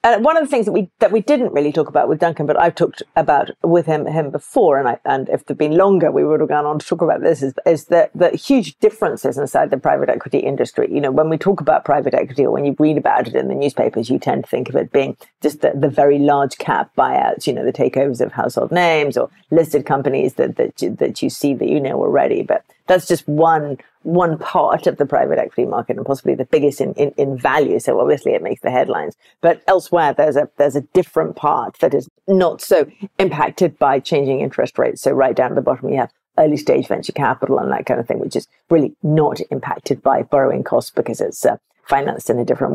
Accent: British